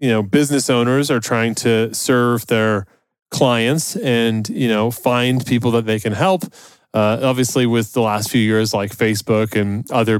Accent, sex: American, male